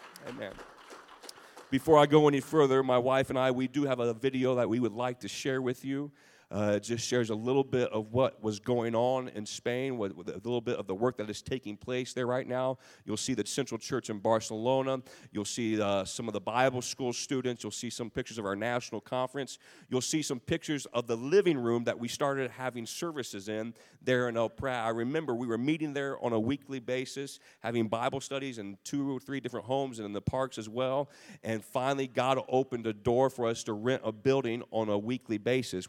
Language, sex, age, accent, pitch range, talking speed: English, male, 40-59, American, 110-135 Hz, 220 wpm